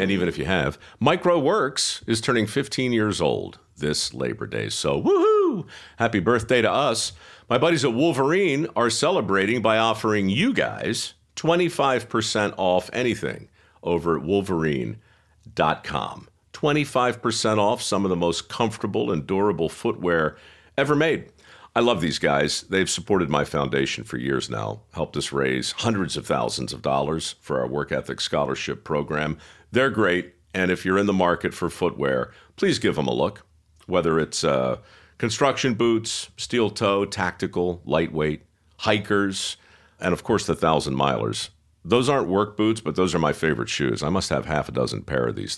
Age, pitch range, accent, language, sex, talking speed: 50-69, 80-115 Hz, American, English, male, 160 wpm